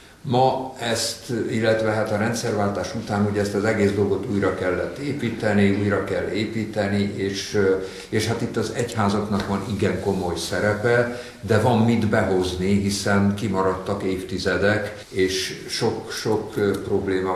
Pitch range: 95-110 Hz